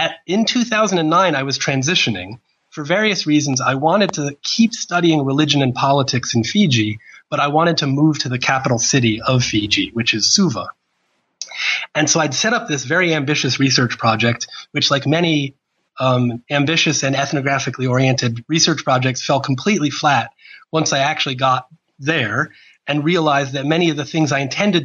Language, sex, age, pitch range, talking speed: English, male, 30-49, 125-160 Hz, 165 wpm